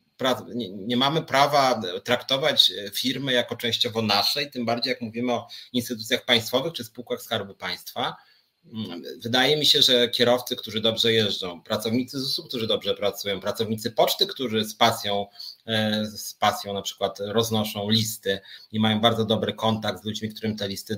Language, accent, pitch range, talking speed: Polish, native, 100-125 Hz, 150 wpm